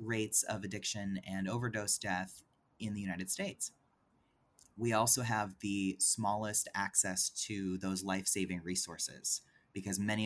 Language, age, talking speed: English, 30-49, 130 wpm